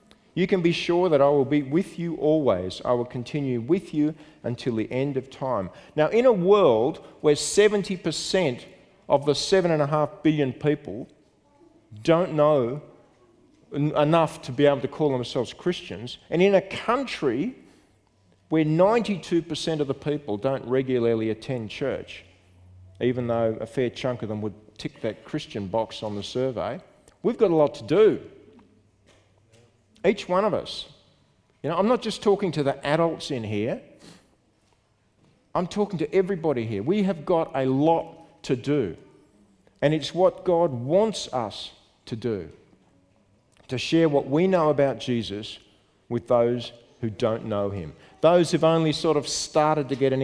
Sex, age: male, 40-59